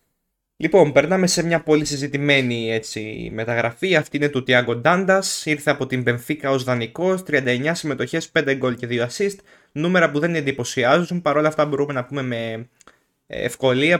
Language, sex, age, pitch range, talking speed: Greek, male, 20-39, 115-150 Hz, 160 wpm